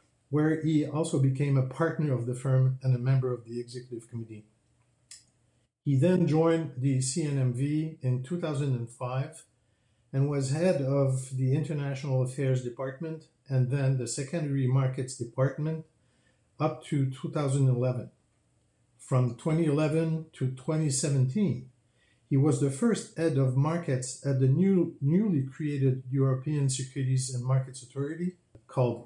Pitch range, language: 125-150 Hz, English